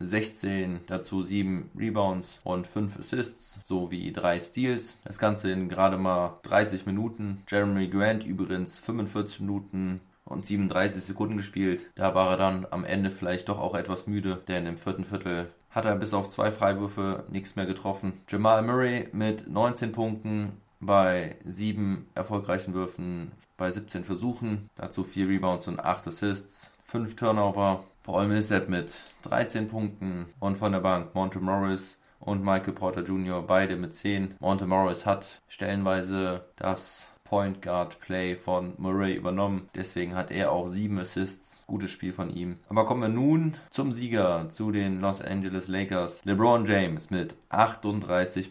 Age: 20-39